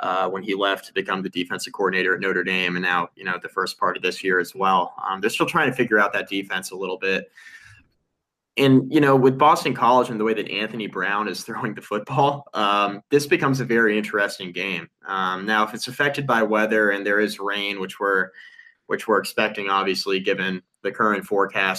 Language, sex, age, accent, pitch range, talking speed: English, male, 20-39, American, 100-125 Hz, 220 wpm